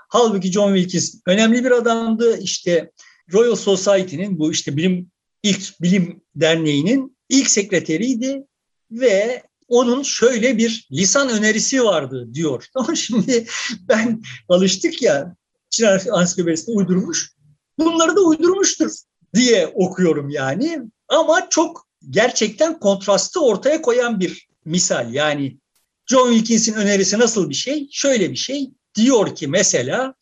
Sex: male